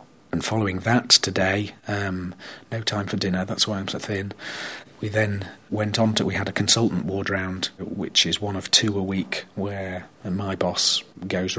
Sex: male